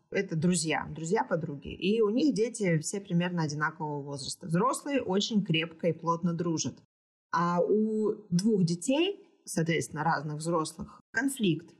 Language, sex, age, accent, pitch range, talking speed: Russian, female, 20-39, native, 160-210 Hz, 130 wpm